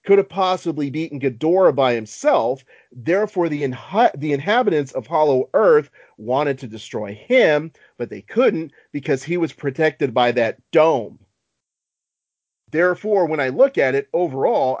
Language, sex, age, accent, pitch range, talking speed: English, male, 40-59, American, 125-155 Hz, 145 wpm